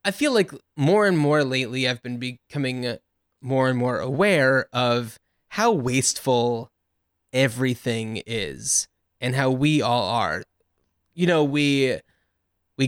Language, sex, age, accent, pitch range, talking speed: English, male, 20-39, American, 115-150 Hz, 130 wpm